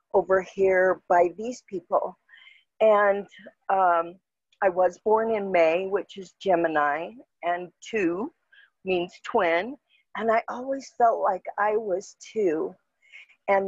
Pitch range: 185-240 Hz